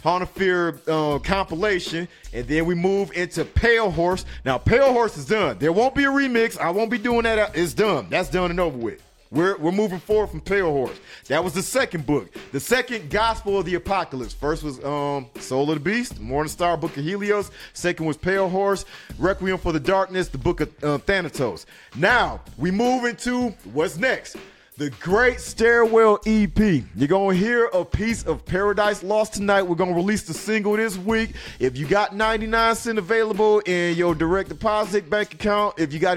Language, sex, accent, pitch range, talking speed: English, male, American, 165-210 Hz, 195 wpm